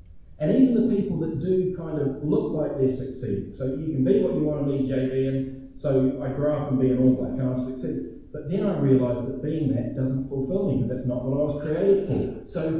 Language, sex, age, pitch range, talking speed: English, male, 30-49, 125-155 Hz, 255 wpm